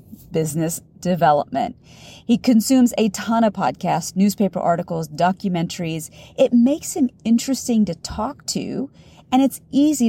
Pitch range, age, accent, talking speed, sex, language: 175-245 Hz, 40-59, American, 125 wpm, female, English